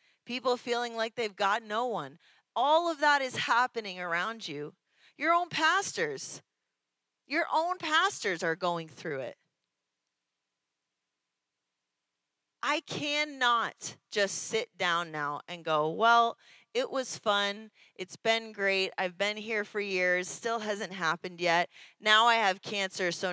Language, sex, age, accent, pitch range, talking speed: English, female, 30-49, American, 180-255 Hz, 135 wpm